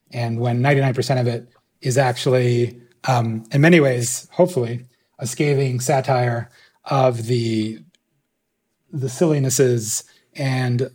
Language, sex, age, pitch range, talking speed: English, male, 30-49, 120-140 Hz, 110 wpm